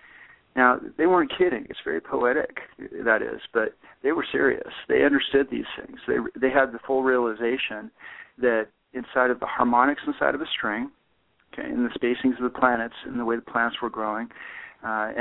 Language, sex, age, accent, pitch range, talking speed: English, male, 50-69, American, 120-150 Hz, 185 wpm